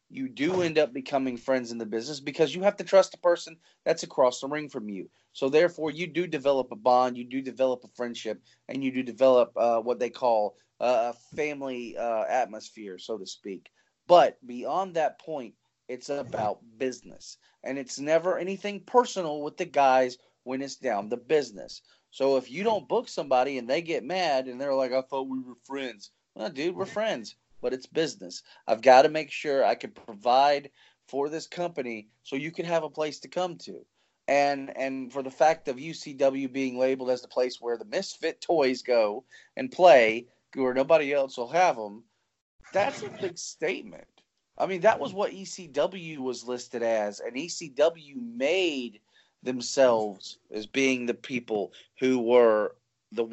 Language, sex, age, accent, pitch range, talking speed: English, male, 30-49, American, 125-165 Hz, 185 wpm